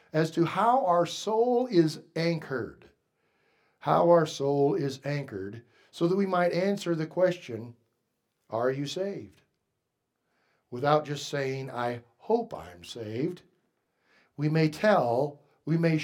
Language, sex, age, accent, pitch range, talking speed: English, male, 60-79, American, 130-175 Hz, 125 wpm